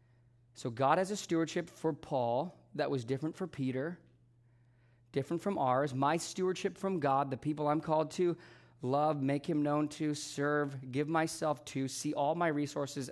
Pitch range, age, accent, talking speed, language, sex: 120-170 Hz, 30-49, American, 170 wpm, English, male